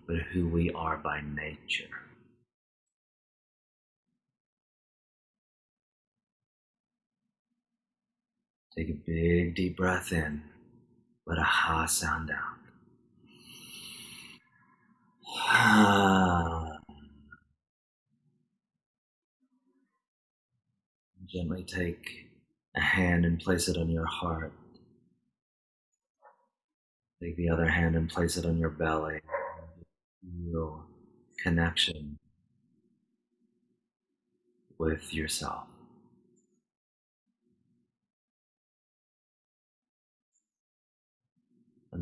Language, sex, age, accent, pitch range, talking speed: English, male, 40-59, American, 80-95 Hz, 60 wpm